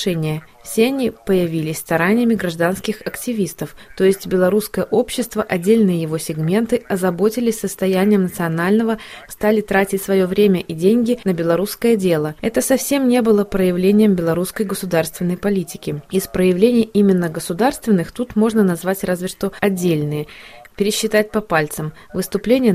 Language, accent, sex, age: Russian, native, female, 20-39